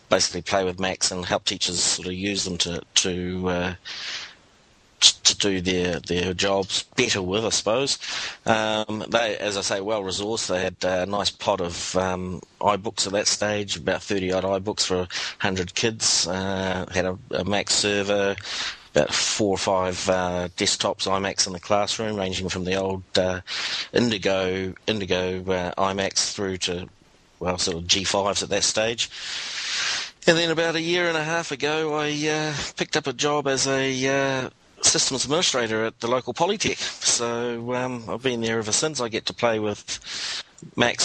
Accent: Australian